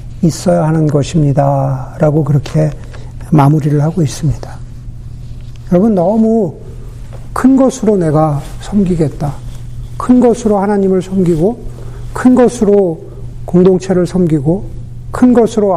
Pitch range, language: 120-190 Hz, Korean